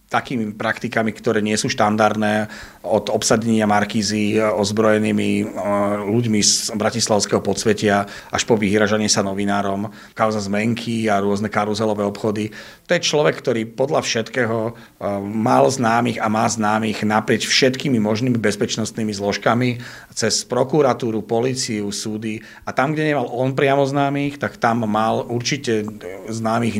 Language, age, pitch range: Slovak, 40-59, 105-115 Hz